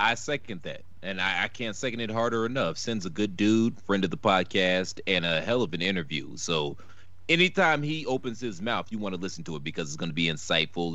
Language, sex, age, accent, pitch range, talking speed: English, male, 30-49, American, 90-135 Hz, 235 wpm